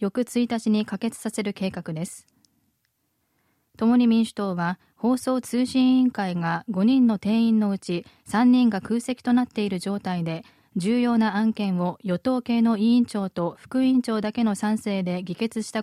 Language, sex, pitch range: Japanese, female, 190-245 Hz